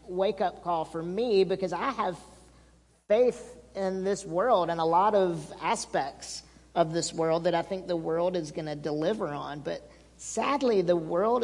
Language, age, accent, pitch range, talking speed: English, 40-59, American, 155-190 Hz, 175 wpm